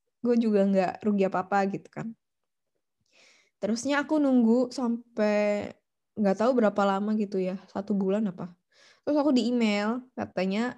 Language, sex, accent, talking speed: Indonesian, female, native, 140 wpm